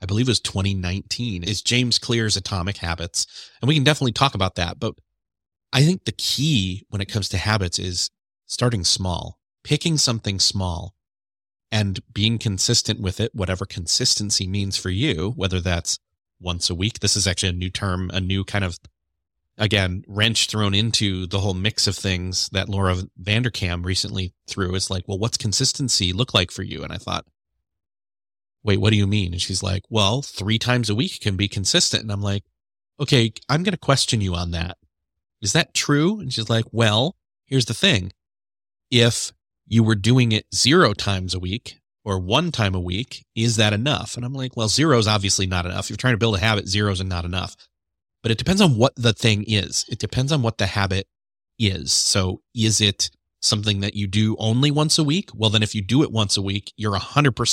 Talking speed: 200 wpm